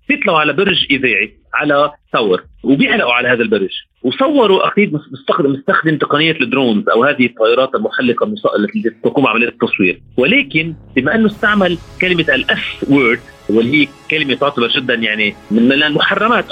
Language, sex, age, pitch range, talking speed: Arabic, male, 30-49, 145-200 Hz, 135 wpm